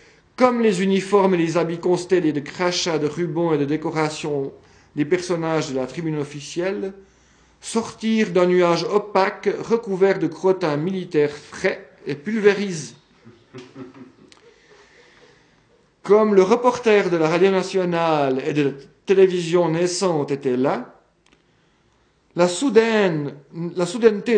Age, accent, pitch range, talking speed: 50-69, French, 155-200 Hz, 120 wpm